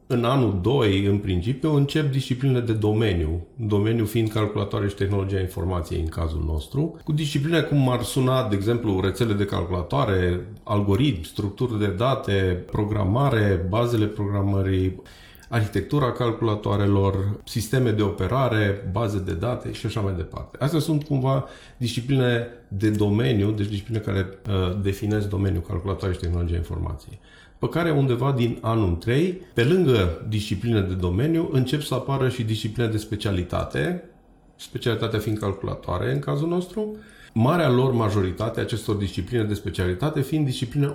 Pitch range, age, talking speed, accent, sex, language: 100-135 Hz, 40-59, 140 wpm, native, male, Romanian